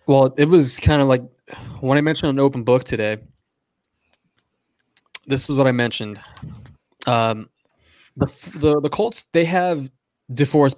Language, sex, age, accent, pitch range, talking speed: English, male, 20-39, American, 115-140 Hz, 145 wpm